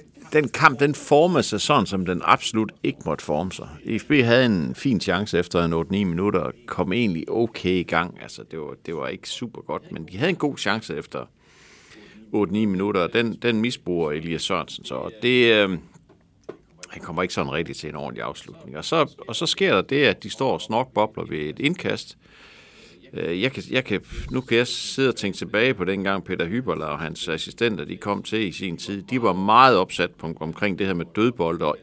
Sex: male